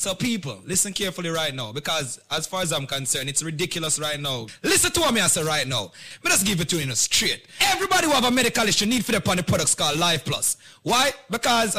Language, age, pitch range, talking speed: English, 30-49, 145-205 Hz, 235 wpm